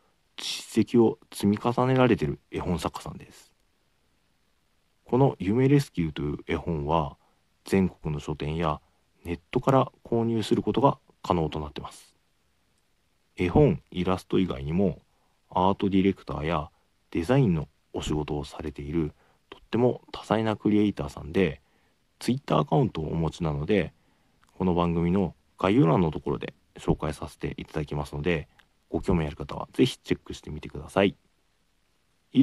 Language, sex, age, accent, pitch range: Japanese, male, 40-59, native, 75-110 Hz